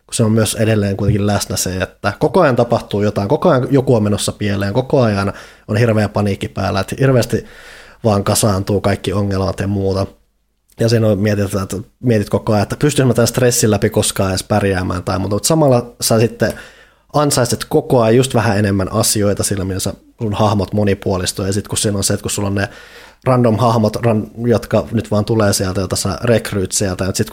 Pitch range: 100-120 Hz